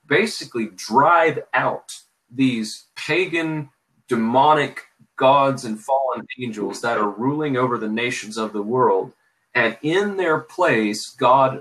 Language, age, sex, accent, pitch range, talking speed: English, 30-49, male, American, 110-135 Hz, 125 wpm